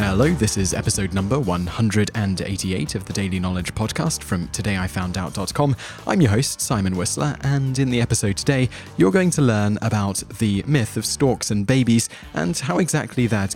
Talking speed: 170 wpm